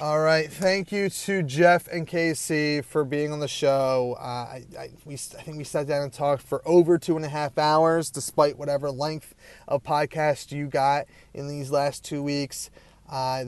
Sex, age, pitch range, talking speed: male, 30-49, 135-160 Hz, 195 wpm